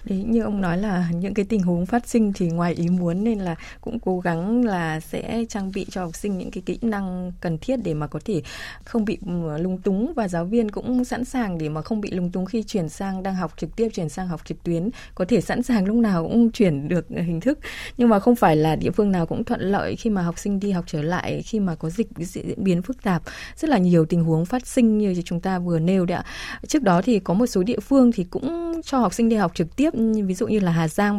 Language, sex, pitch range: Vietnamese, female, 175-230 Hz